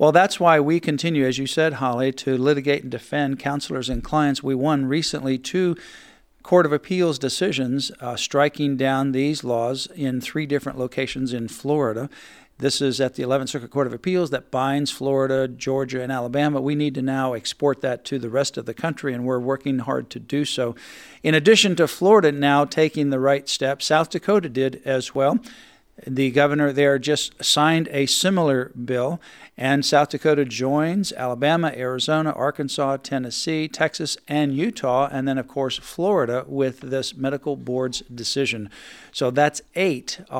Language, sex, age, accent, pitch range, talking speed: English, male, 50-69, American, 130-155 Hz, 170 wpm